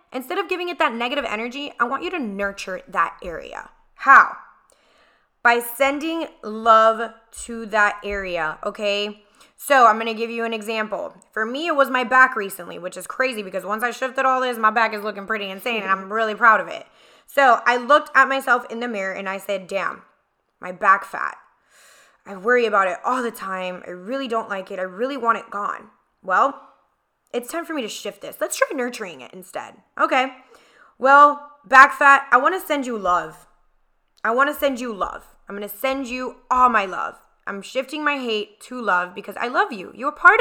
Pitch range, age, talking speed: 210-285 Hz, 10-29, 205 wpm